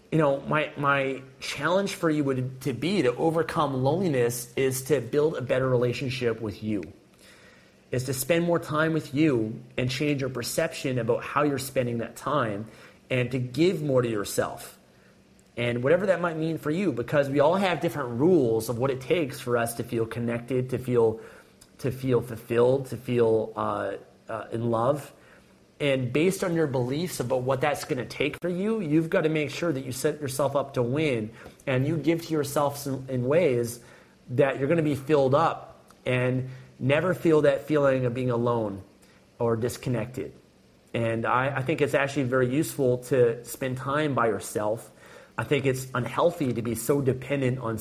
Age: 30-49